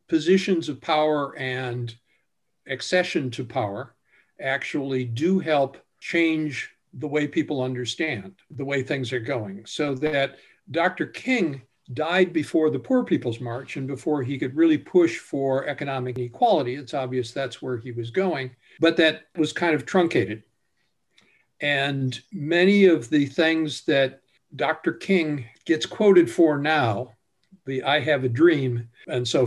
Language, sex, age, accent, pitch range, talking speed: English, male, 60-79, American, 130-160 Hz, 145 wpm